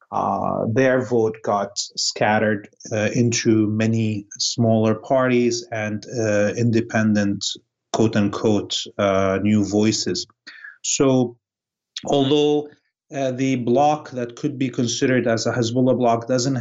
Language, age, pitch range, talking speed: English, 30-49, 115-130 Hz, 110 wpm